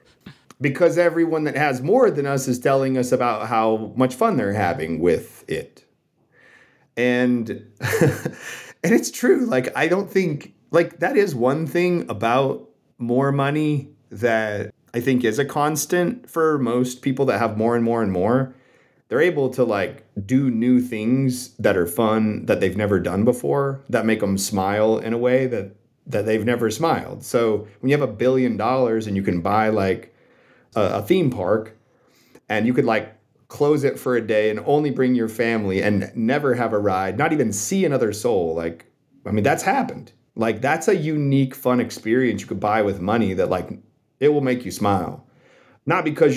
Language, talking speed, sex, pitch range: English, 180 wpm, male, 110-145 Hz